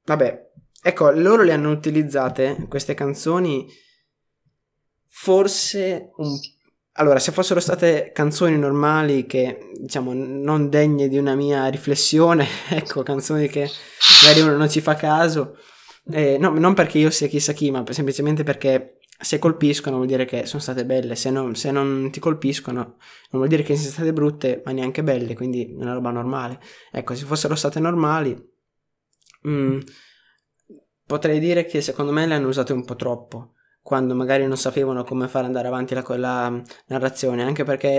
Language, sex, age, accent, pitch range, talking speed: Italian, male, 20-39, native, 130-150 Hz, 165 wpm